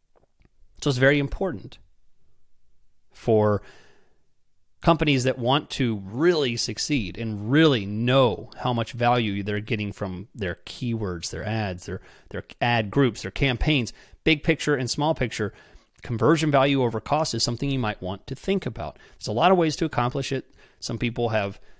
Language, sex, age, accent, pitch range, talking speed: English, male, 30-49, American, 105-140 Hz, 160 wpm